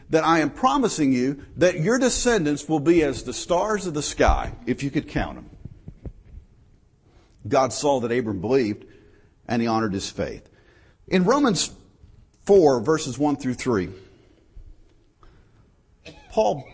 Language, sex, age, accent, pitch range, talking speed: English, male, 50-69, American, 105-175 Hz, 140 wpm